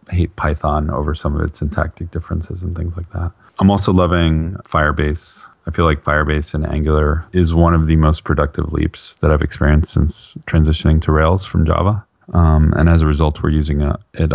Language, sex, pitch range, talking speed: English, male, 75-85 Hz, 190 wpm